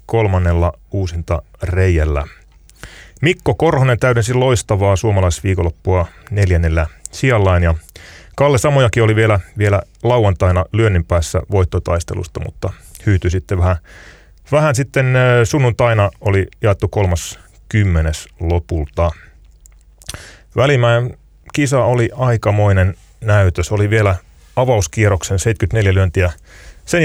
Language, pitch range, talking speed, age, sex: Finnish, 85-115 Hz, 95 wpm, 30-49, male